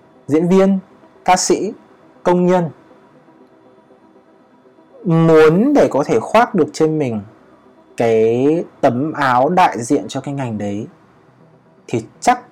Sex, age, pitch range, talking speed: male, 20-39, 110-165 Hz, 120 wpm